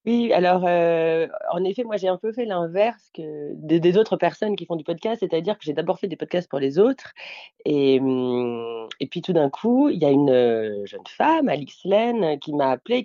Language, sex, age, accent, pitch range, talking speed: French, female, 30-49, French, 140-225 Hz, 215 wpm